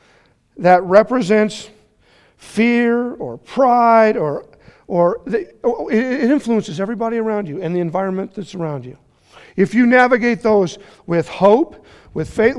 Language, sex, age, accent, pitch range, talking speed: English, male, 40-59, American, 150-220 Hz, 130 wpm